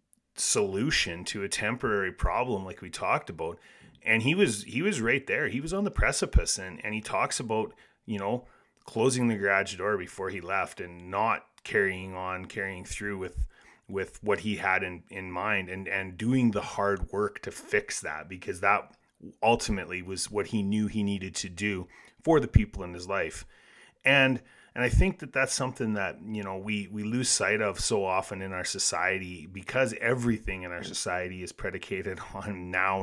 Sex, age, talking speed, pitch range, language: male, 30-49, 190 wpm, 95-110 Hz, English